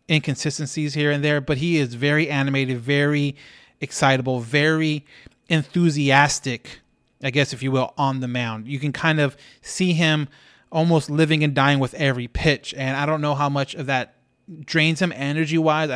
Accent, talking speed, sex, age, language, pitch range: American, 170 wpm, male, 30-49, English, 130-155 Hz